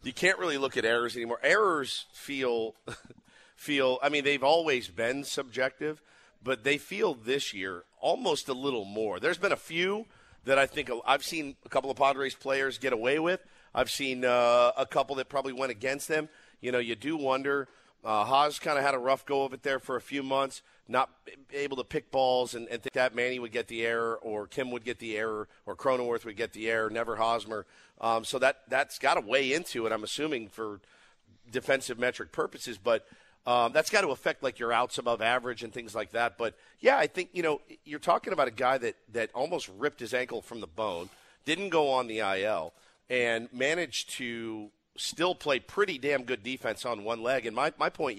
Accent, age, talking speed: American, 50-69, 215 wpm